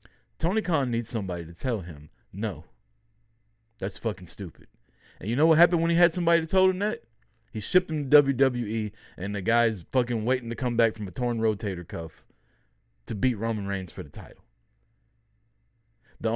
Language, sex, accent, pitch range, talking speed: English, male, American, 110-125 Hz, 185 wpm